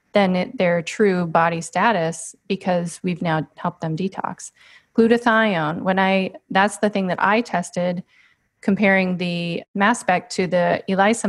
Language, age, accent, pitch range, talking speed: English, 30-49, American, 175-205 Hz, 150 wpm